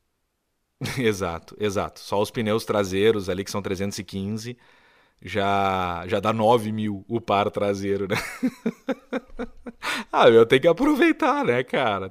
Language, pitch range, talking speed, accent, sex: Portuguese, 90-115 Hz, 130 wpm, Brazilian, male